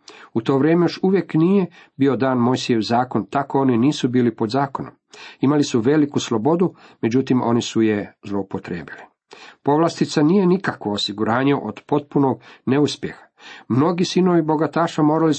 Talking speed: 140 wpm